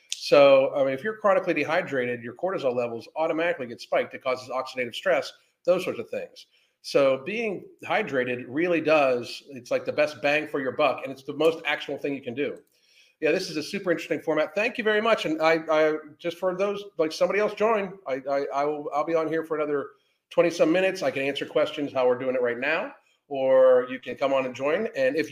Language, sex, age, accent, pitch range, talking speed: English, male, 40-59, American, 140-185 Hz, 225 wpm